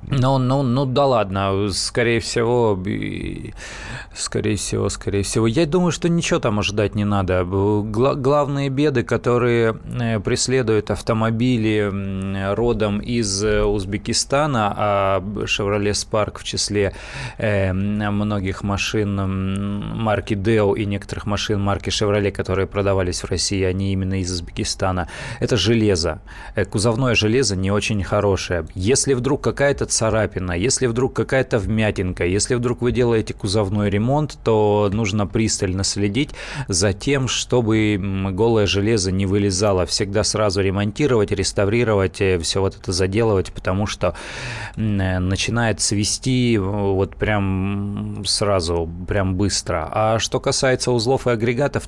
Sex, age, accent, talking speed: male, 20-39, native, 120 wpm